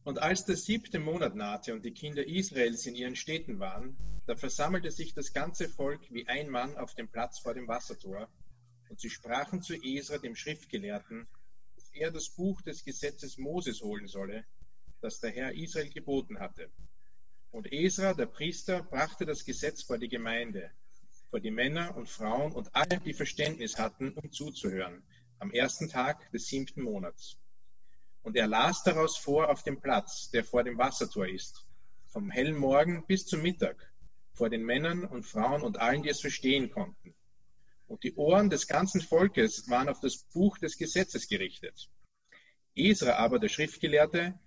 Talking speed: 170 wpm